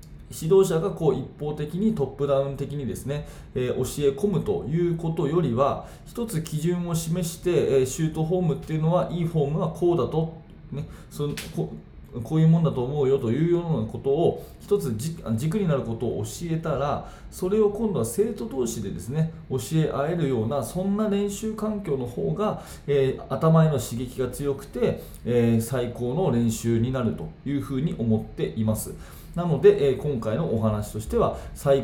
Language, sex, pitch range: Japanese, male, 120-165 Hz